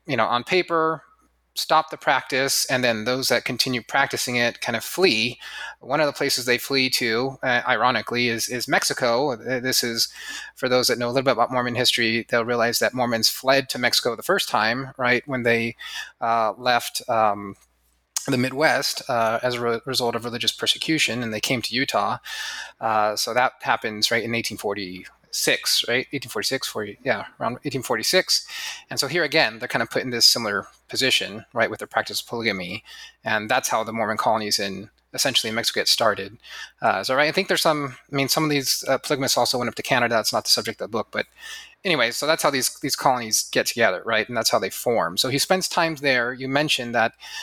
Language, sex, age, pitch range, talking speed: English, male, 30-49, 115-140 Hz, 210 wpm